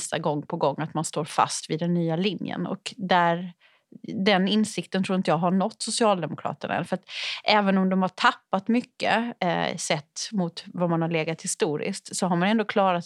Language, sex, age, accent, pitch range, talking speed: Swedish, female, 30-49, native, 165-205 Hz, 195 wpm